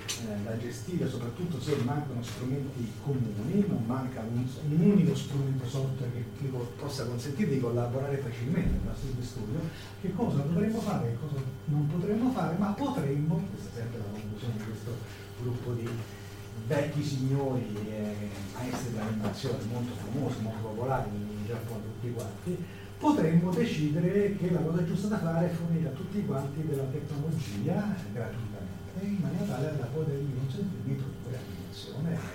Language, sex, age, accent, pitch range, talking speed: Italian, male, 40-59, native, 105-150 Hz, 150 wpm